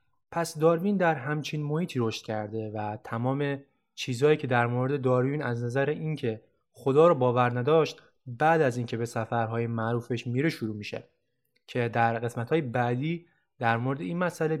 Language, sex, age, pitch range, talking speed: English, male, 20-39, 120-155 Hz, 155 wpm